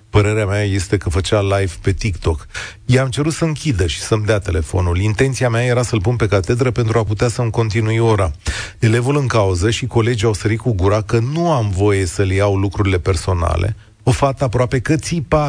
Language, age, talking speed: Romanian, 30-49, 200 wpm